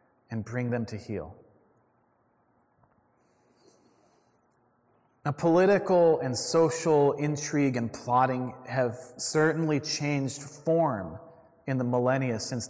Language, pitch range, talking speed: English, 120-145 Hz, 95 wpm